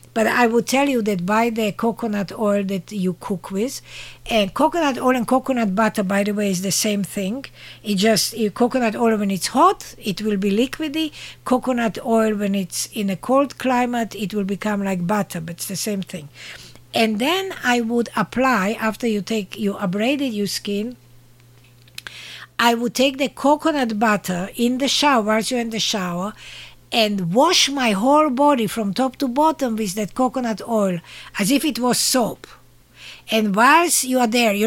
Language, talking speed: English, 185 wpm